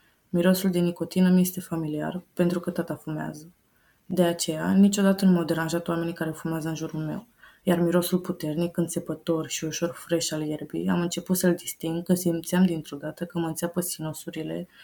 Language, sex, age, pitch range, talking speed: Romanian, female, 20-39, 155-180 Hz, 170 wpm